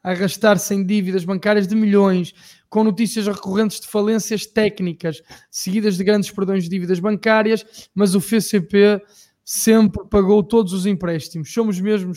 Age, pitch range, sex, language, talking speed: 20-39, 175-210 Hz, male, Portuguese, 150 wpm